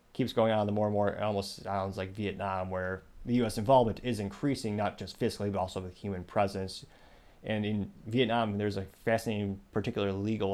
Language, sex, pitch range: English, male, 100-120 Hz